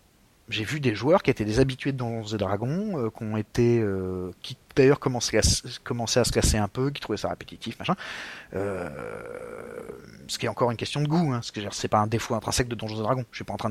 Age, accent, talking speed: 30-49, French, 235 wpm